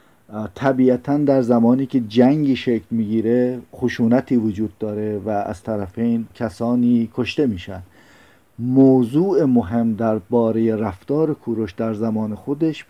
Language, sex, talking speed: Persian, male, 120 wpm